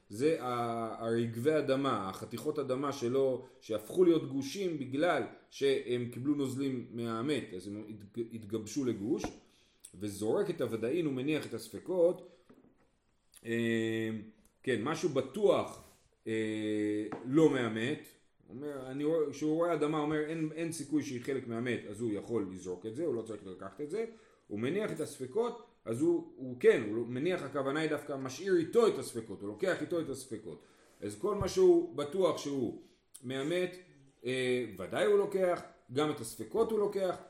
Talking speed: 145 wpm